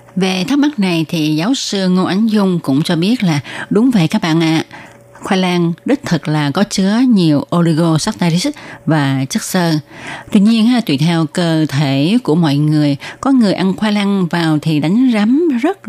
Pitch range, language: 155-200 Hz, Vietnamese